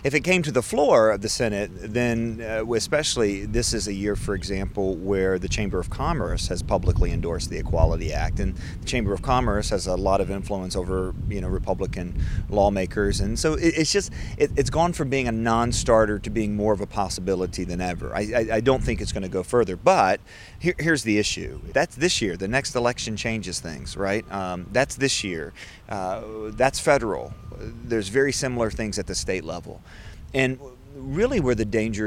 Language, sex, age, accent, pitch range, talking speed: English, male, 30-49, American, 95-120 Hz, 200 wpm